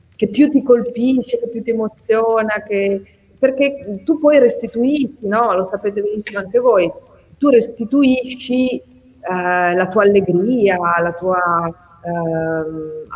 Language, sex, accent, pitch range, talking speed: Italian, female, native, 170-230 Hz, 130 wpm